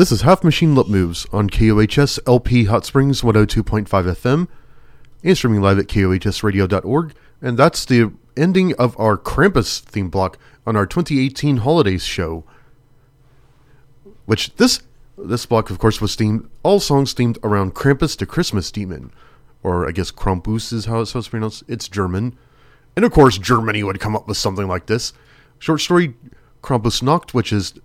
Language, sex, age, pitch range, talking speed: English, male, 30-49, 105-140 Hz, 170 wpm